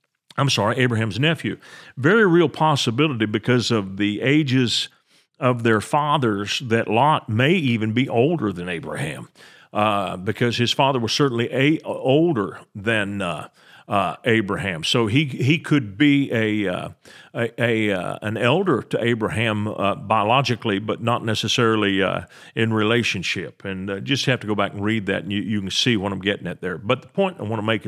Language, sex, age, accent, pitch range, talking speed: English, male, 40-59, American, 110-140 Hz, 180 wpm